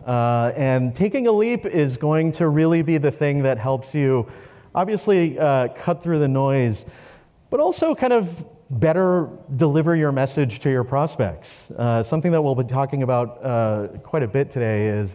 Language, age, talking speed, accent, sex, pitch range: English, 30-49, 180 wpm, American, male, 120-160 Hz